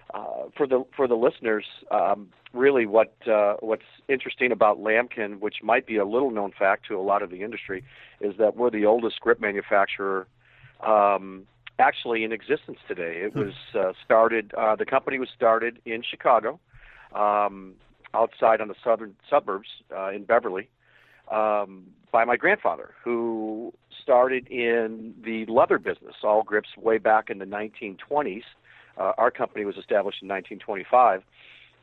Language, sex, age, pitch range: English, male, 50-69, 105-120 Hz